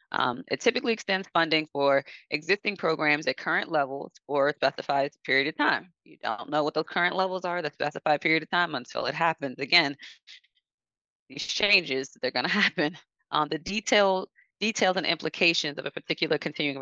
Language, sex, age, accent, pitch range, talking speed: English, female, 20-39, American, 145-185 Hz, 175 wpm